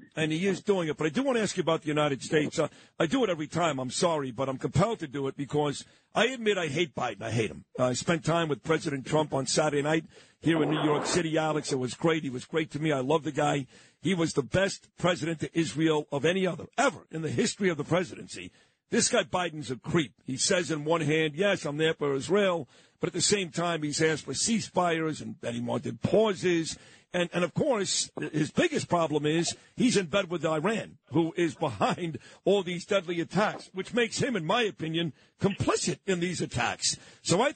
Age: 50-69